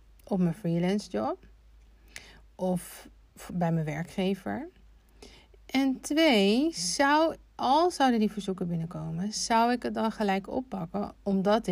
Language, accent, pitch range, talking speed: Dutch, Dutch, 180-215 Hz, 120 wpm